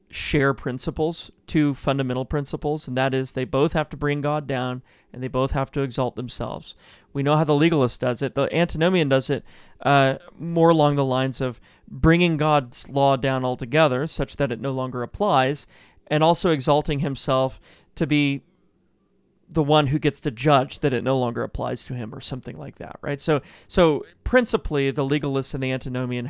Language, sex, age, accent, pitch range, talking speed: English, male, 30-49, American, 130-160 Hz, 185 wpm